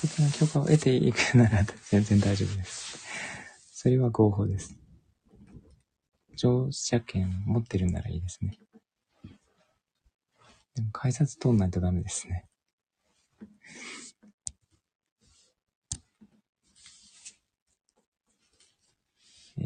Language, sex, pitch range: Japanese, male, 95-130 Hz